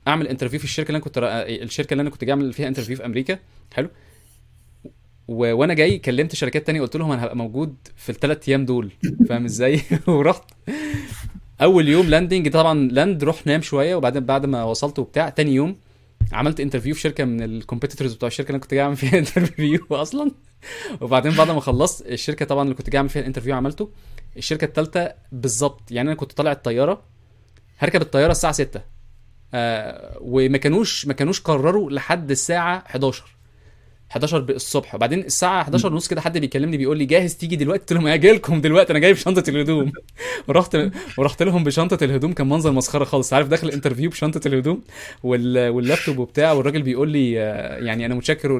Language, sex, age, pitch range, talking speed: Arabic, male, 20-39, 125-155 Hz, 185 wpm